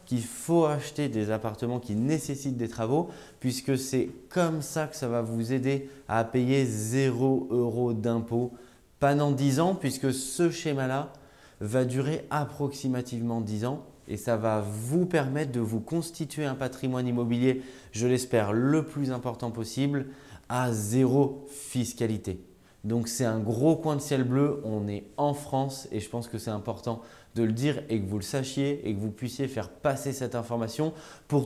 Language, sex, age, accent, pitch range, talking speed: French, male, 20-39, French, 115-145 Hz, 170 wpm